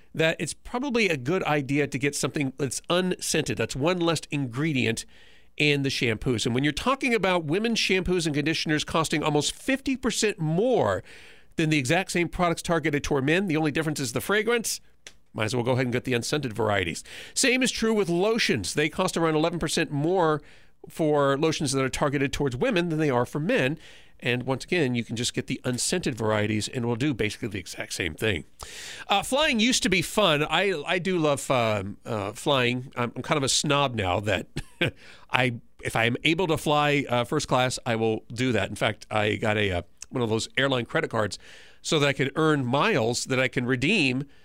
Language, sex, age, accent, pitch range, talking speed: English, male, 40-59, American, 125-170 Hz, 205 wpm